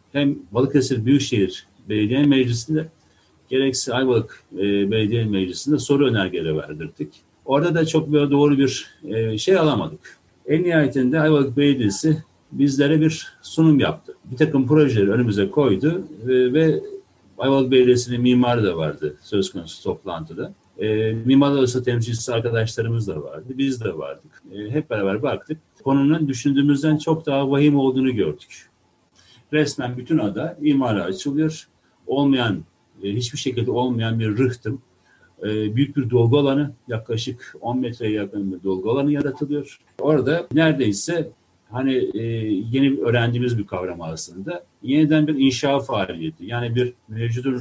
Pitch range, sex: 110-145 Hz, male